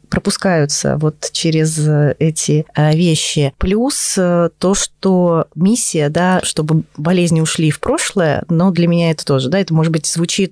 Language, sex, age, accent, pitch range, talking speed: Russian, female, 20-39, native, 155-185 Hz, 145 wpm